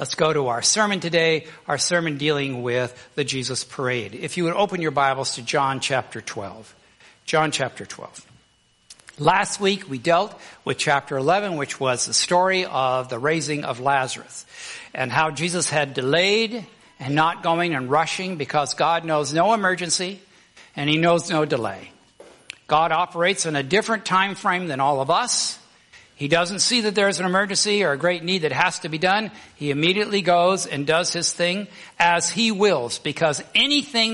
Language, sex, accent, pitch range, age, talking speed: English, male, American, 145-190 Hz, 60-79, 180 wpm